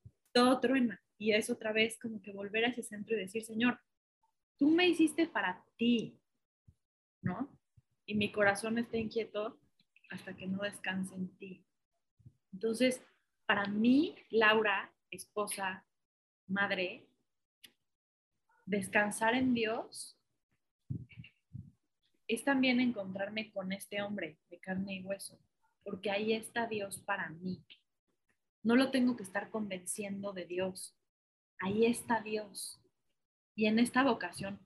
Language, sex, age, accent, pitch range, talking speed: Spanish, female, 20-39, Mexican, 200-235 Hz, 125 wpm